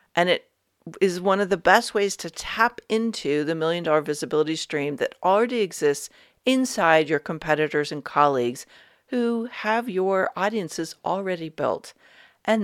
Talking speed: 145 wpm